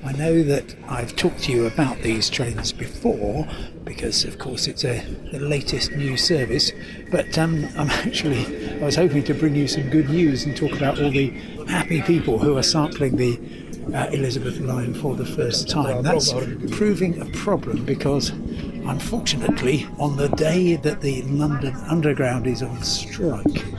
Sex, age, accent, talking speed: male, 60-79, British, 170 wpm